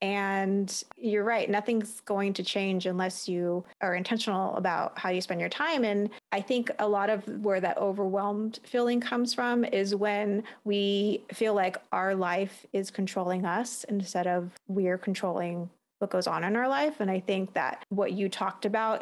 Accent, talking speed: American, 175 wpm